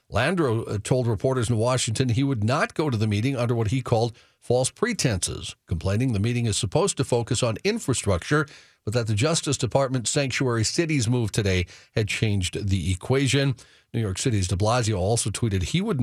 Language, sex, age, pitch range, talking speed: English, male, 50-69, 100-130 Hz, 185 wpm